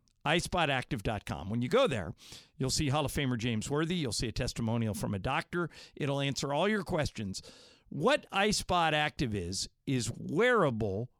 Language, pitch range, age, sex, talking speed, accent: English, 120-170 Hz, 50-69, male, 155 wpm, American